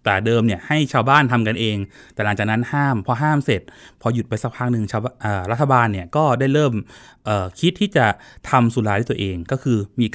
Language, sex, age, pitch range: Thai, male, 20-39, 100-130 Hz